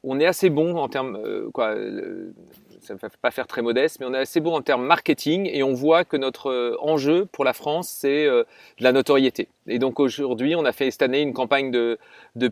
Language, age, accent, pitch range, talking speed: French, 40-59, French, 140-175 Hz, 240 wpm